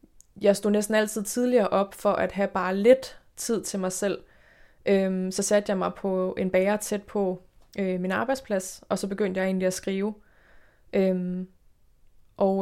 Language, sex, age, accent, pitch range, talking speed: Danish, female, 20-39, native, 190-210 Hz, 175 wpm